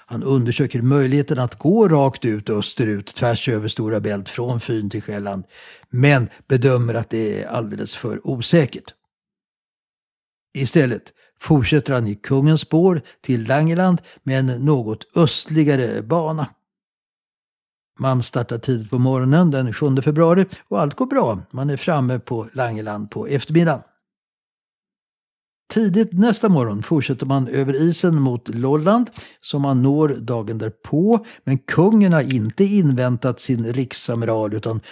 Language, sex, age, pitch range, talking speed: Swedish, male, 60-79, 120-160 Hz, 135 wpm